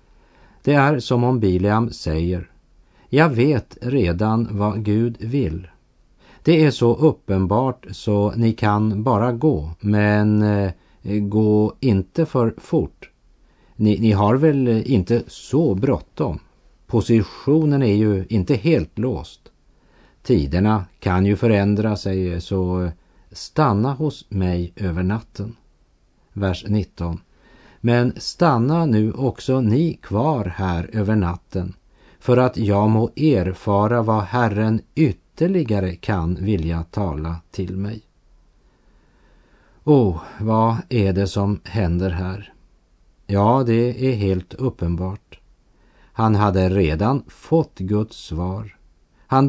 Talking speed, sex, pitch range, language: 115 wpm, male, 95-120 Hz, French